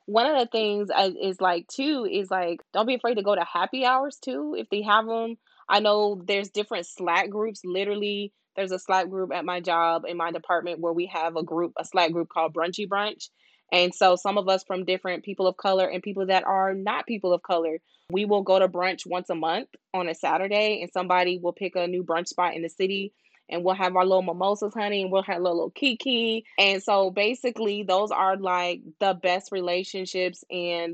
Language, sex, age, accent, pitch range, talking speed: English, female, 20-39, American, 175-205 Hz, 220 wpm